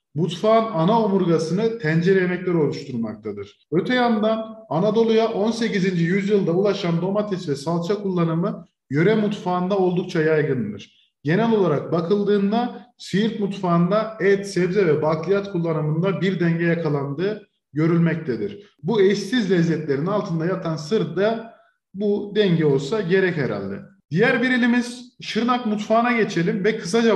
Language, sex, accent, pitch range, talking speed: Turkish, male, native, 175-220 Hz, 120 wpm